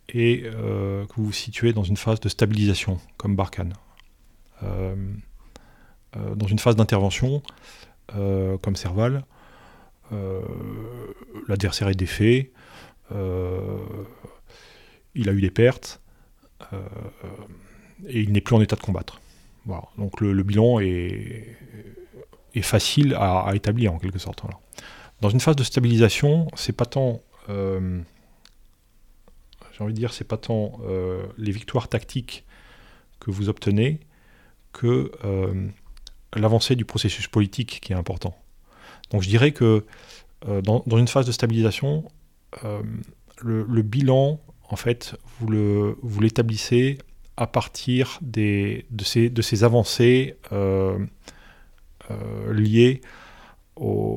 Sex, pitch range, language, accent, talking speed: male, 100-120 Hz, French, French, 130 wpm